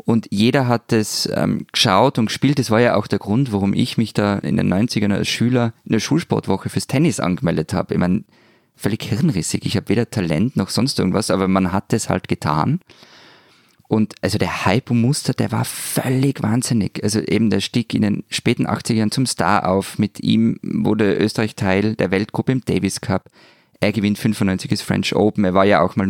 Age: 20-39